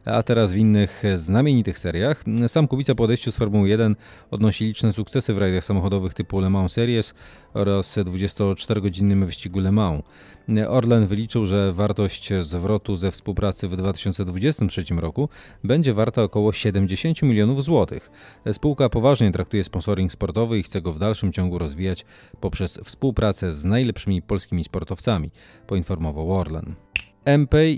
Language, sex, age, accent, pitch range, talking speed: Polish, male, 30-49, native, 95-110 Hz, 140 wpm